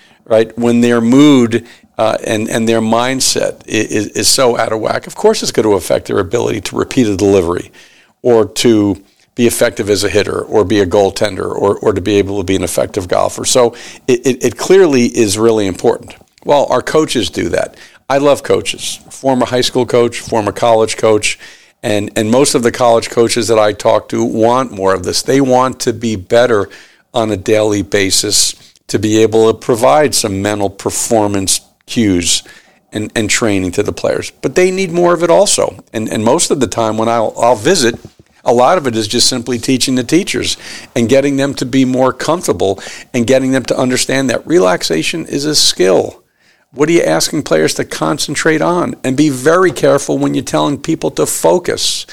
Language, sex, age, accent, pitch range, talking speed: English, male, 50-69, American, 110-135 Hz, 200 wpm